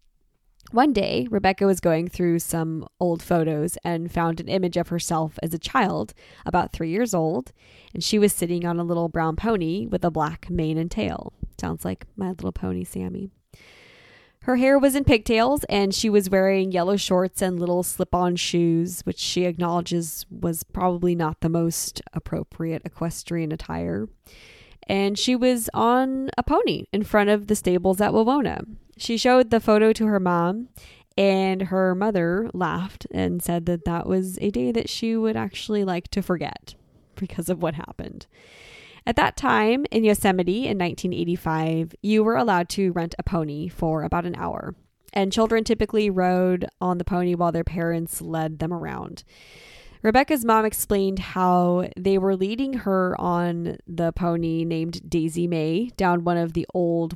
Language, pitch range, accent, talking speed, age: English, 165-200 Hz, American, 170 wpm, 10-29